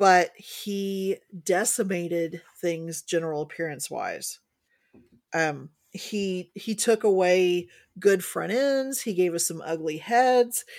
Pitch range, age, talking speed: 175-215 Hz, 40-59, 115 wpm